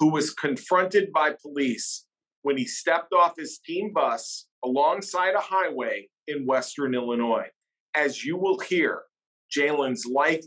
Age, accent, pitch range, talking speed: 40-59, American, 140-195 Hz, 140 wpm